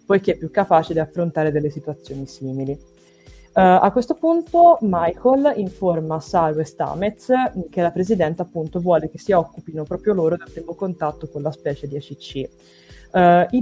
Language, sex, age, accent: Italian, female, 20-39, native